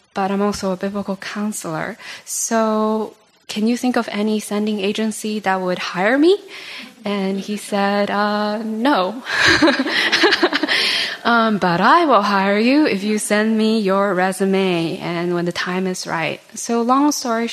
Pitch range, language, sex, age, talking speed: 185-220 Hz, English, female, 10-29, 150 wpm